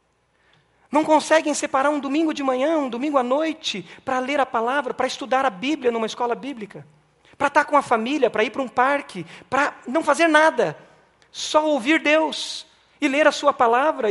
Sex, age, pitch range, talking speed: male, 40-59, 235-305 Hz, 185 wpm